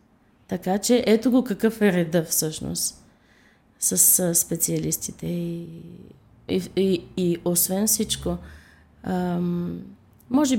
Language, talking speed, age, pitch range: Bulgarian, 95 wpm, 20-39, 165-210 Hz